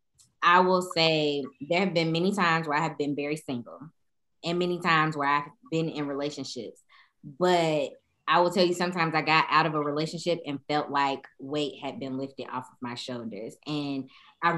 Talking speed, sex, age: 195 wpm, female, 20-39